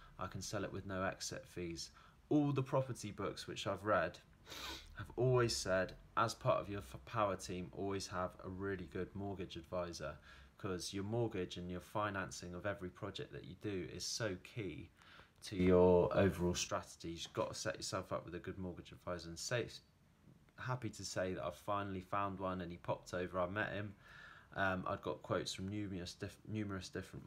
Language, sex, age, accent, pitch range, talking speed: English, male, 20-39, British, 90-105 Hz, 190 wpm